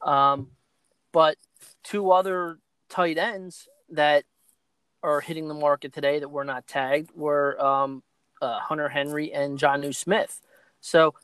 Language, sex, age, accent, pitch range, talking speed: English, male, 30-49, American, 140-165 Hz, 140 wpm